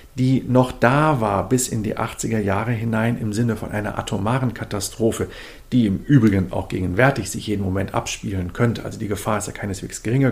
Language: German